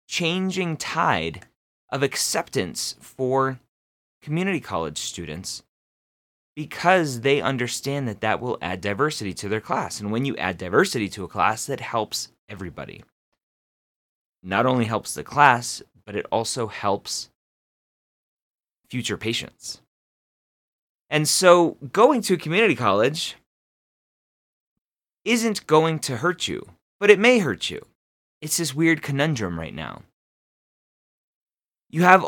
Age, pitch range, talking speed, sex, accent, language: 30-49, 110-170 Hz, 125 wpm, male, American, English